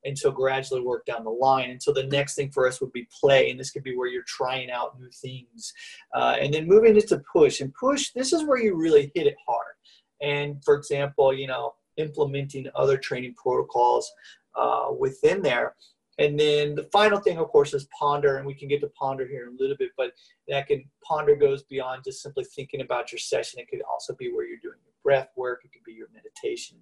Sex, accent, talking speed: male, American, 230 wpm